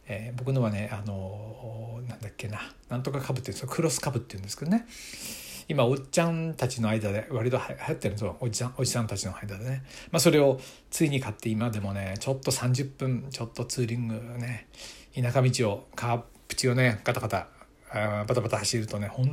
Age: 60-79